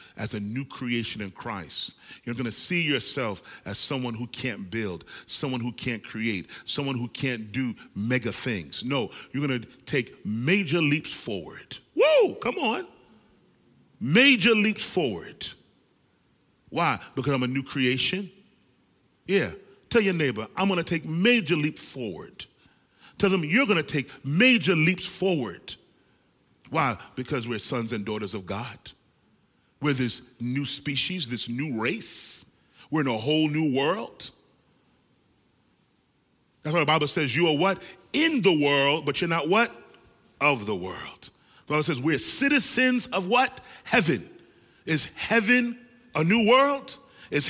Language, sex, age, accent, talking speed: English, male, 40-59, American, 150 wpm